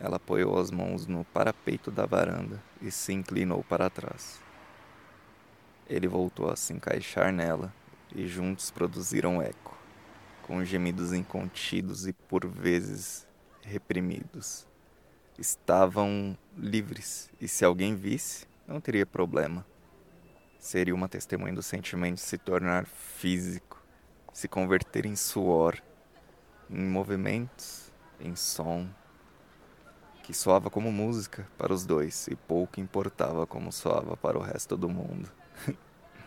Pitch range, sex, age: 90-100 Hz, male, 20-39